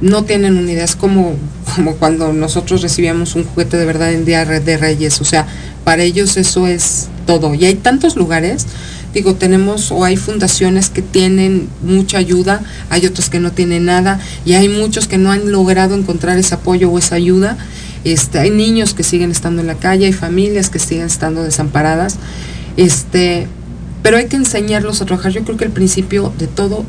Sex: female